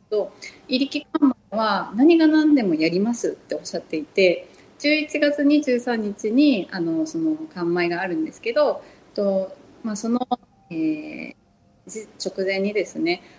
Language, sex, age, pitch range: Japanese, female, 30-49, 190-290 Hz